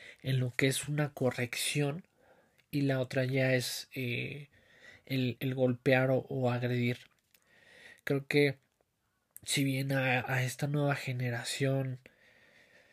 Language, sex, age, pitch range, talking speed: Spanish, male, 20-39, 125-140 Hz, 125 wpm